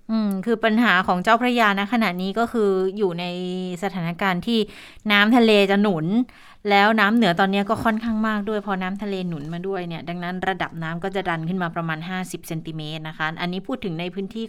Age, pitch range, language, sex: 20-39, 170-210 Hz, Thai, female